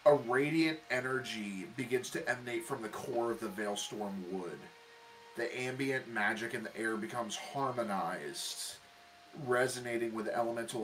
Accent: American